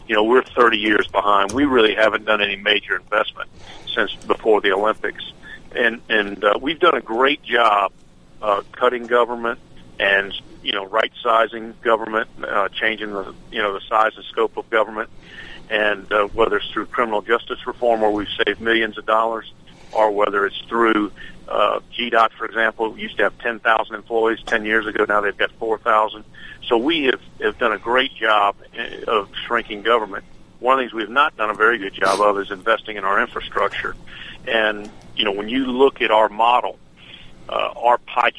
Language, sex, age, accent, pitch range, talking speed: English, male, 50-69, American, 105-115 Hz, 185 wpm